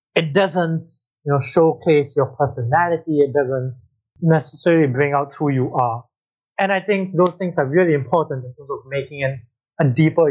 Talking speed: 175 wpm